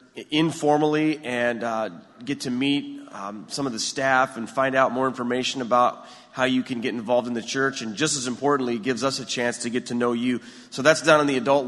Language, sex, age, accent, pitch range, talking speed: English, male, 30-49, American, 120-140 Hz, 230 wpm